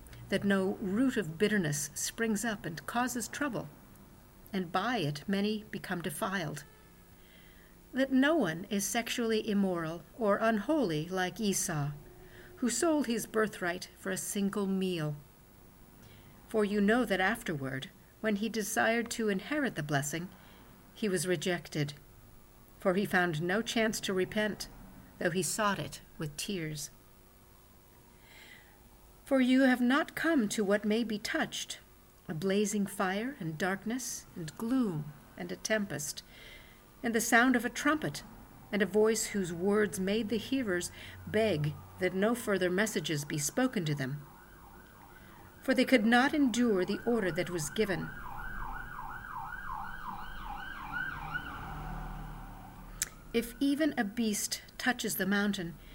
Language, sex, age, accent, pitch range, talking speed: English, female, 50-69, American, 175-230 Hz, 130 wpm